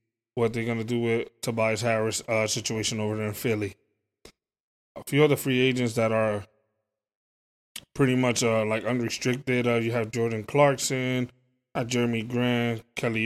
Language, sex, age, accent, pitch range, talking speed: English, male, 20-39, American, 115-130 Hz, 160 wpm